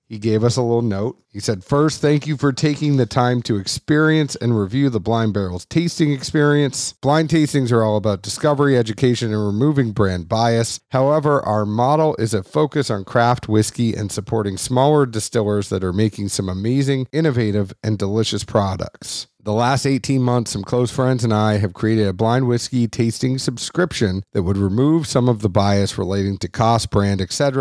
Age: 40-59